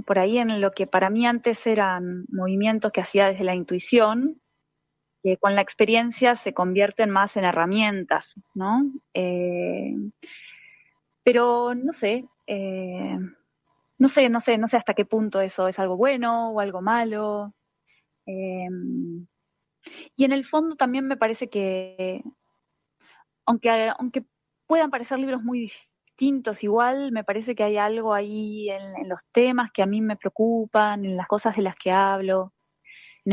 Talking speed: 155 wpm